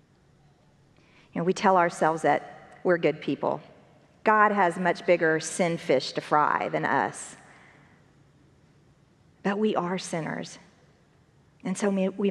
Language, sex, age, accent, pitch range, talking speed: English, female, 50-69, American, 155-210 Hz, 125 wpm